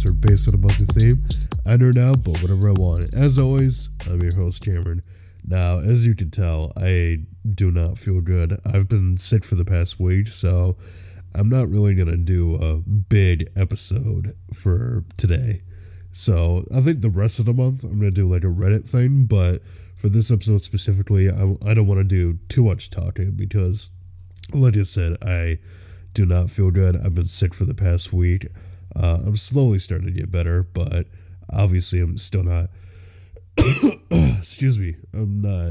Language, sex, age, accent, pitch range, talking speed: English, male, 20-39, American, 90-105 Hz, 180 wpm